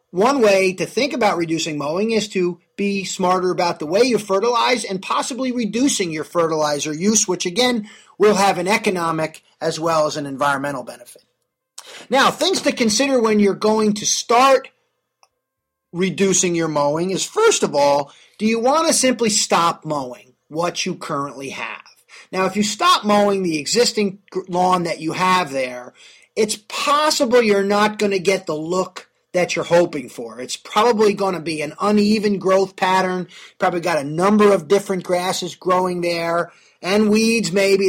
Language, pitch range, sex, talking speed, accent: English, 170-220 Hz, male, 170 wpm, American